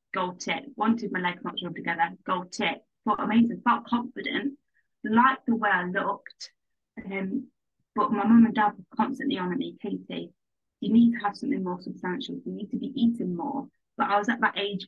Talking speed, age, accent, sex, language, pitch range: 205 wpm, 20-39, British, female, English, 190-240 Hz